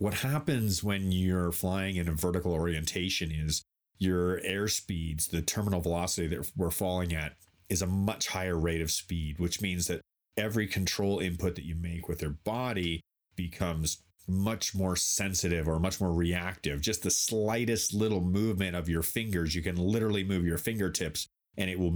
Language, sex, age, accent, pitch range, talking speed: English, male, 30-49, American, 85-95 Hz, 175 wpm